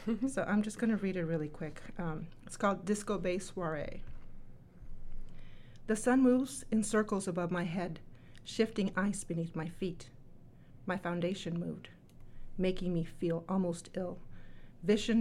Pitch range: 170-210 Hz